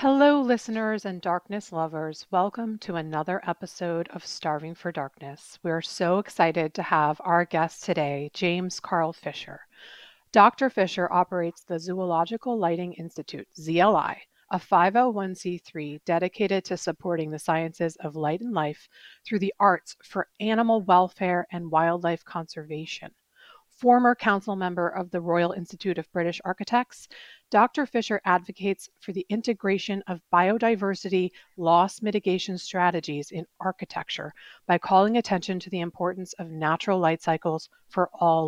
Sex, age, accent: female, 40-59, American